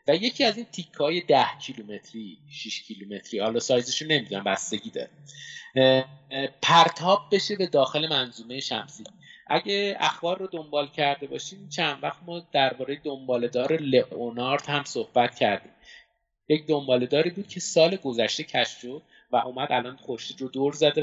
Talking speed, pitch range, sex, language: 130 wpm, 120-150 Hz, male, Persian